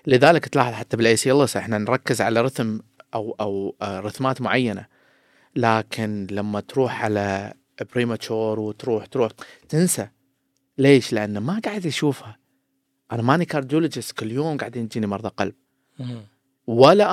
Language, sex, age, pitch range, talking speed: Arabic, male, 30-49, 105-135 Hz, 135 wpm